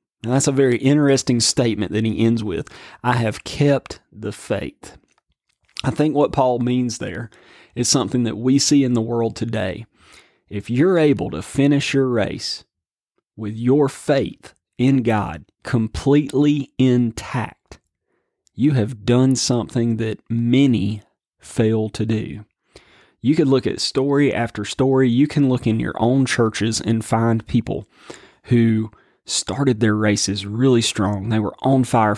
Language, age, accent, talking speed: English, 30-49, American, 145 wpm